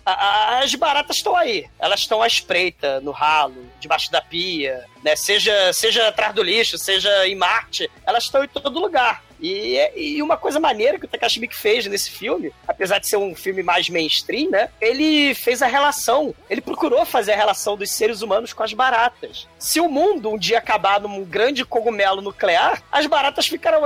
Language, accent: Portuguese, Brazilian